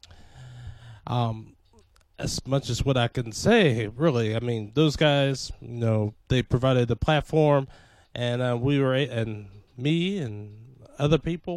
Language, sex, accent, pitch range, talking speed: English, male, American, 115-165 Hz, 140 wpm